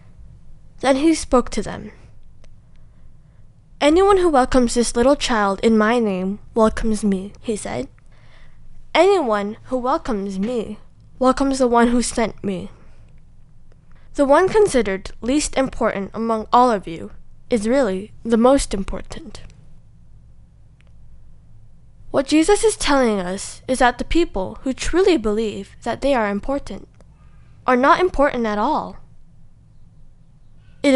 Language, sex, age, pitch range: Korean, female, 10-29, 195-265 Hz